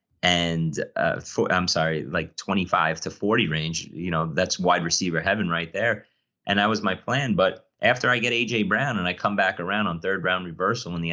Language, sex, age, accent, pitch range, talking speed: English, male, 30-49, American, 90-110 Hz, 215 wpm